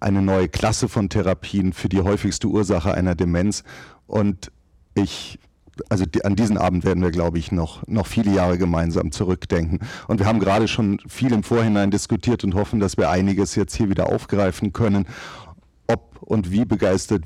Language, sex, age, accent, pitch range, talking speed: German, male, 40-59, German, 90-105 Hz, 175 wpm